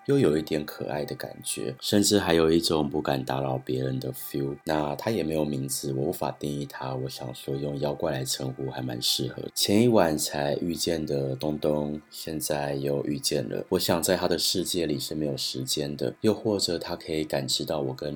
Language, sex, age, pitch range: Chinese, male, 30-49, 70-90 Hz